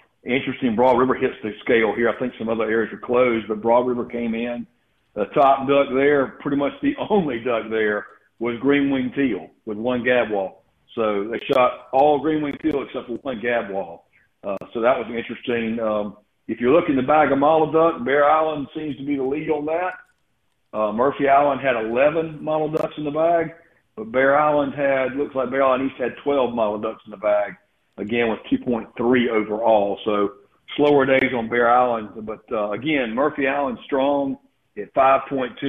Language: English